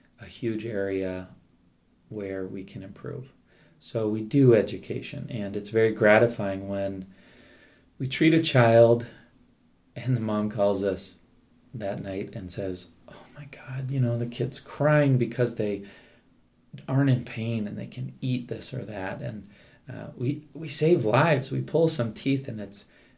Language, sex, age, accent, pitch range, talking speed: English, male, 30-49, American, 105-125 Hz, 160 wpm